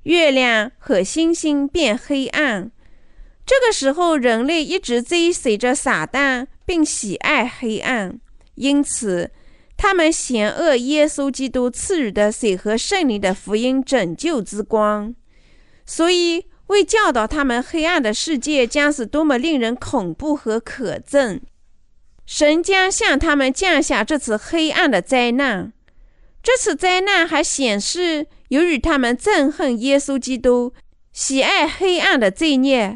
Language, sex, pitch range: Chinese, female, 245-330 Hz